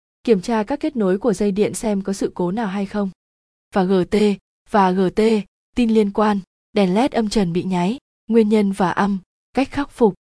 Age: 20-39